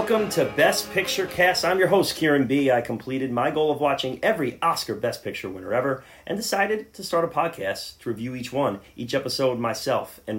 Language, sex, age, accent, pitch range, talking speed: English, male, 30-49, American, 110-150 Hz, 210 wpm